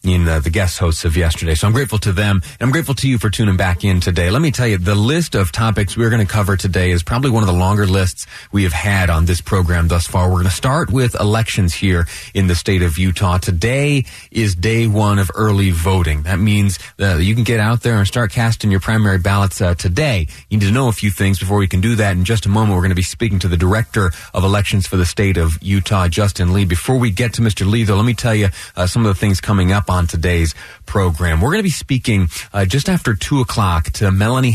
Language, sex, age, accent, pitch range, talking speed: English, male, 30-49, American, 90-115 Hz, 265 wpm